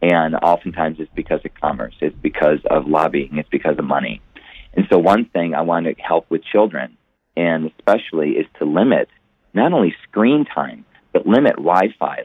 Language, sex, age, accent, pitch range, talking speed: English, male, 40-59, American, 85-115 Hz, 175 wpm